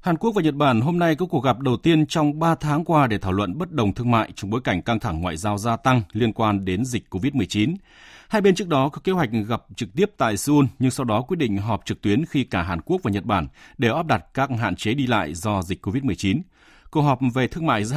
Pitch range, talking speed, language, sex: 100-145 Hz, 270 wpm, Vietnamese, male